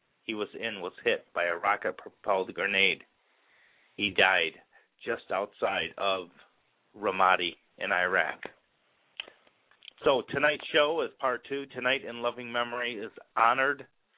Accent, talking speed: American, 125 wpm